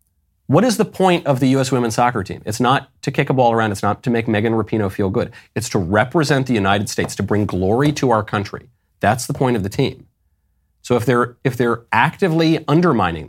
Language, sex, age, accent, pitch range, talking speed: English, male, 30-49, American, 100-145 Hz, 225 wpm